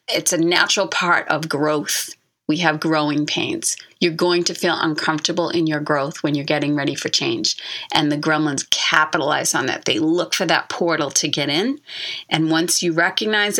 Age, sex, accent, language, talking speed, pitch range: 30-49, female, American, English, 185 wpm, 155-190 Hz